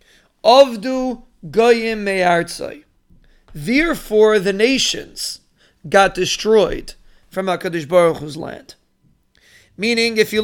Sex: male